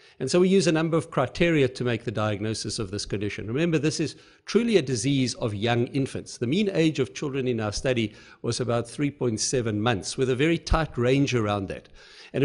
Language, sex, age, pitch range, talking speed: English, male, 50-69, 115-155 Hz, 210 wpm